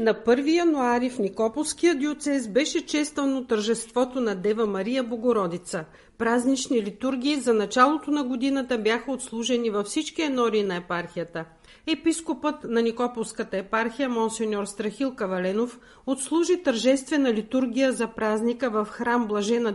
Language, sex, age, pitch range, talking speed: Bulgarian, female, 50-69, 215-265 Hz, 125 wpm